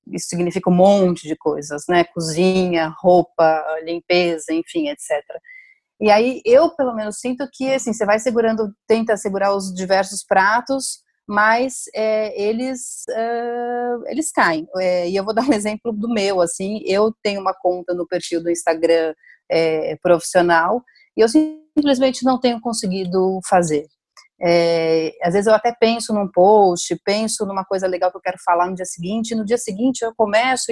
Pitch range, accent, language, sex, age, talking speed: 185-245 Hz, Brazilian, Portuguese, female, 30-49, 170 wpm